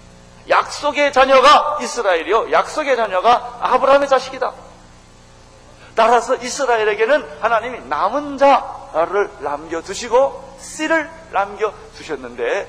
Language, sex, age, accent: Korean, male, 40-59, native